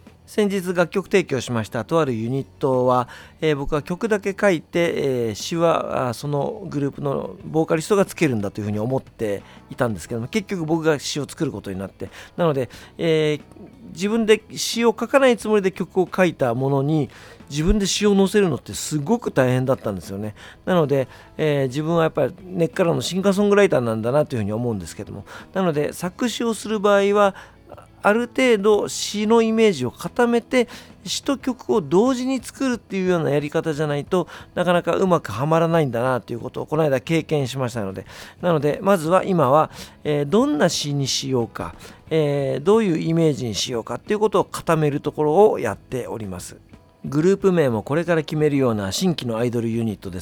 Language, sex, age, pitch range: Japanese, male, 40-59, 120-185 Hz